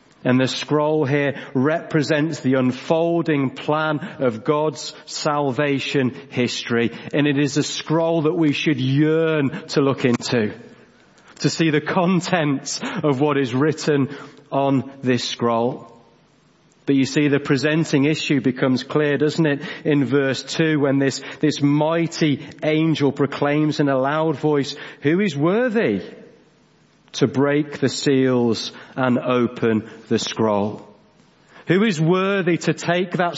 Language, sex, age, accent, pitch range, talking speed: English, male, 40-59, British, 135-160 Hz, 135 wpm